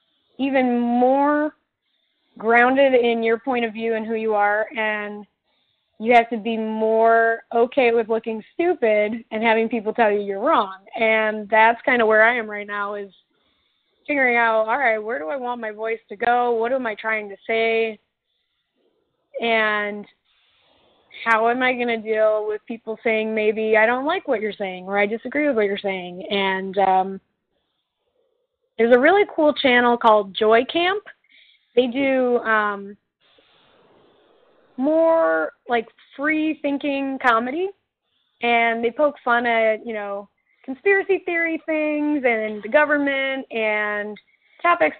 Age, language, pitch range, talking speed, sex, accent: 20-39, English, 215-265 Hz, 150 wpm, female, American